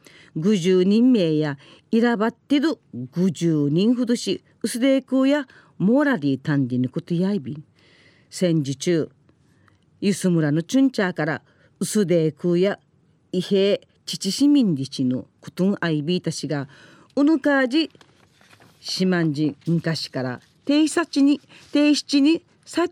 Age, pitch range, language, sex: 40-59, 160-230 Hz, Japanese, female